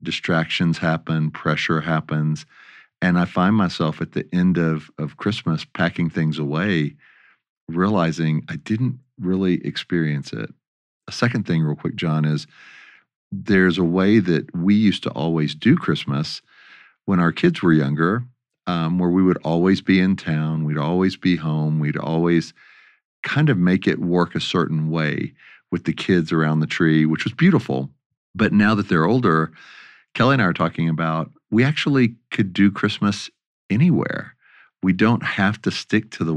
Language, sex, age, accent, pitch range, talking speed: English, male, 50-69, American, 80-95 Hz, 165 wpm